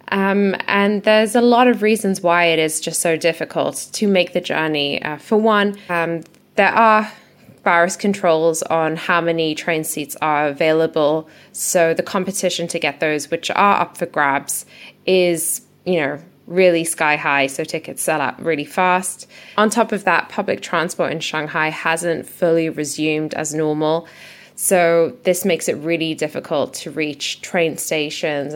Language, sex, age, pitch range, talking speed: English, female, 10-29, 160-195 Hz, 165 wpm